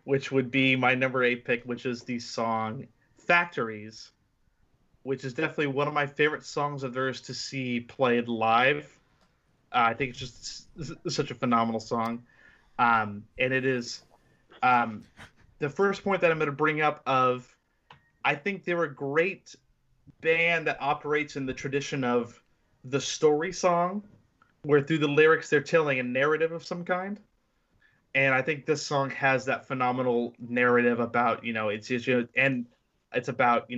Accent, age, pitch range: American, 30-49, 125-150 Hz